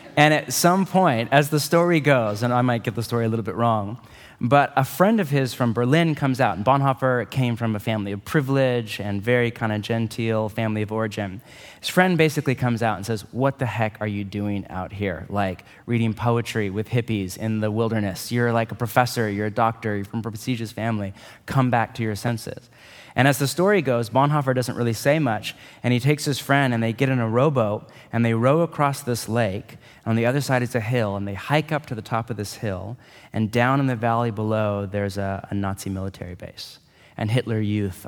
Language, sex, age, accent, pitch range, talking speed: English, male, 30-49, American, 105-130 Hz, 225 wpm